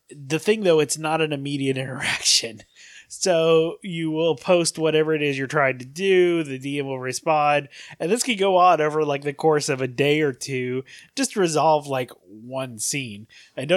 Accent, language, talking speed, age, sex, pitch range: American, English, 185 wpm, 20-39, male, 130-165 Hz